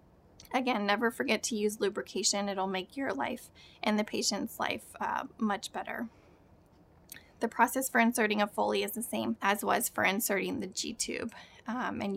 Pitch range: 200-235 Hz